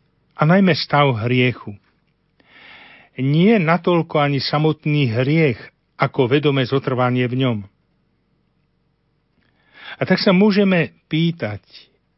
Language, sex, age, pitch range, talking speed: Slovak, male, 50-69, 120-150 Hz, 95 wpm